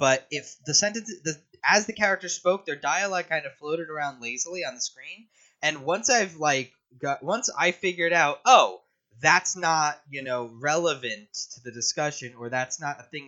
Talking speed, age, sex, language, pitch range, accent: 190 wpm, 20-39, male, English, 130-175 Hz, American